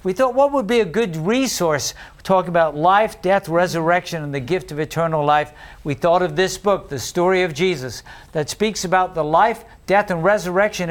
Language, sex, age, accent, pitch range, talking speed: English, male, 50-69, American, 155-200 Hz, 205 wpm